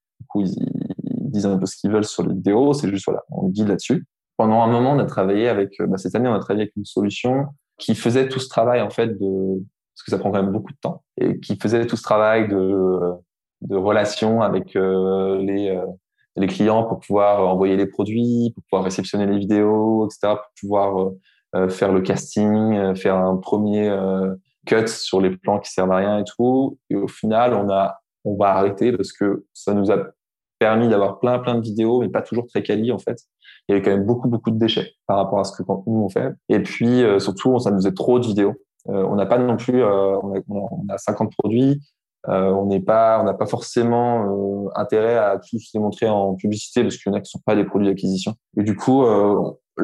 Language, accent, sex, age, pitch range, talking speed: French, French, male, 20-39, 95-115 Hz, 225 wpm